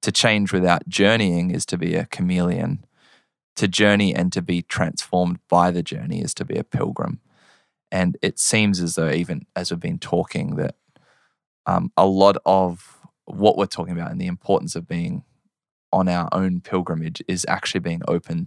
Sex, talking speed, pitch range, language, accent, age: male, 180 wpm, 90-100 Hz, English, Australian, 20-39